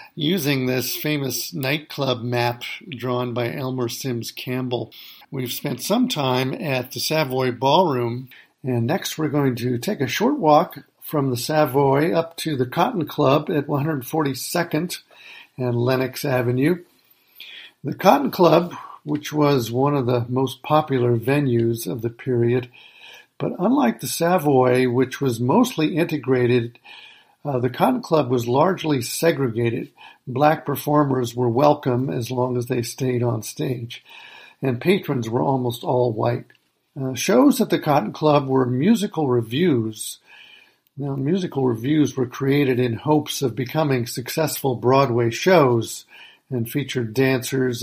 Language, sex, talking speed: English, male, 140 wpm